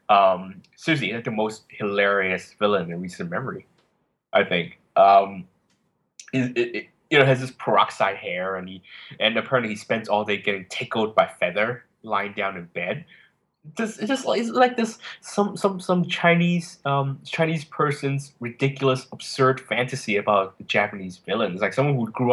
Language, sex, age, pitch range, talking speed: English, male, 20-39, 100-140 Hz, 165 wpm